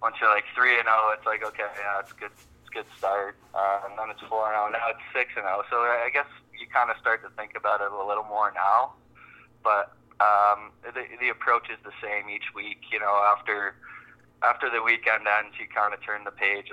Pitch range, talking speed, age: 95-110 Hz, 225 wpm, 20-39